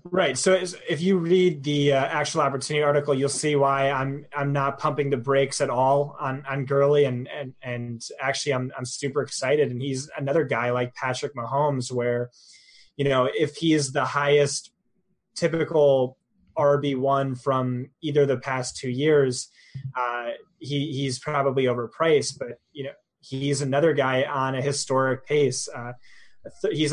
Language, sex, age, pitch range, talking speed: English, male, 20-39, 130-145 Hz, 160 wpm